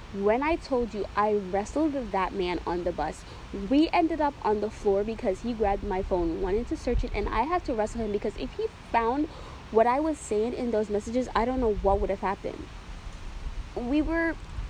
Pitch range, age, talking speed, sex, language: 190-280 Hz, 20-39, 215 wpm, female, English